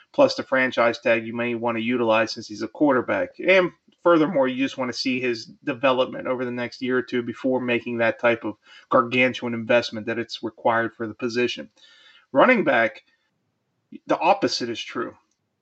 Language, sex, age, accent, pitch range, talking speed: English, male, 30-49, American, 120-180 Hz, 180 wpm